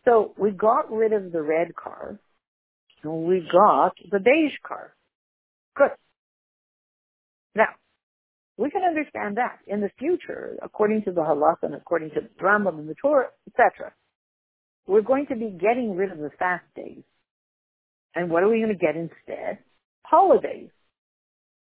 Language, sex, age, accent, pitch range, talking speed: English, female, 60-79, American, 170-250 Hz, 155 wpm